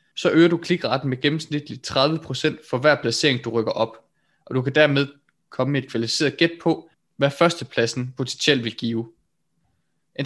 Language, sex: Danish, male